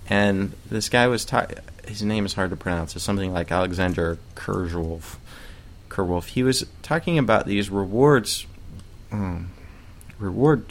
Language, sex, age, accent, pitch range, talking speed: English, male, 20-39, American, 90-105 Hz, 140 wpm